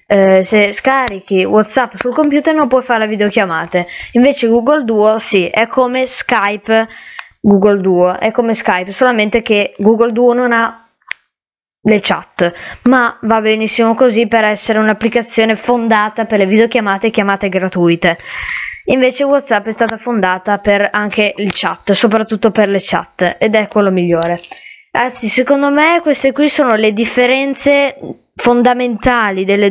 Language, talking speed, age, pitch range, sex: Italian, 145 wpm, 20-39, 205-245 Hz, female